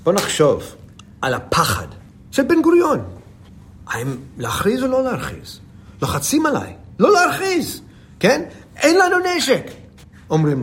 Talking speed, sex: 120 wpm, male